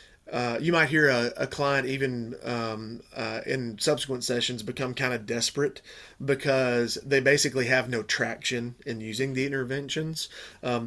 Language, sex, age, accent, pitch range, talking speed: English, male, 30-49, American, 115-135 Hz, 155 wpm